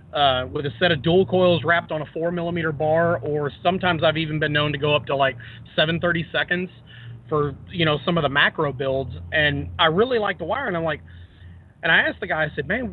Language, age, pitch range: English, 30-49, 140-180 Hz